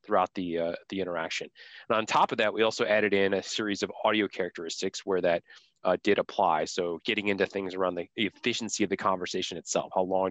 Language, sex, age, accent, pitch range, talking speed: English, male, 30-49, American, 95-110 Hz, 215 wpm